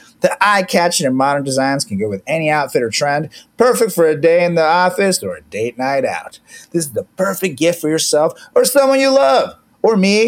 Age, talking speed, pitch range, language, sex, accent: 30-49, 215 wpm, 160-210 Hz, English, male, American